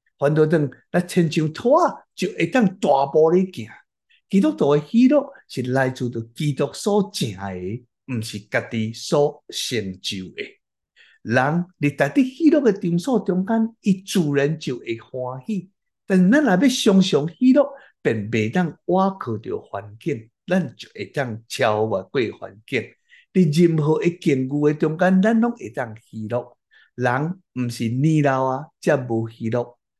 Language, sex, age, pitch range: Chinese, male, 60-79, 120-180 Hz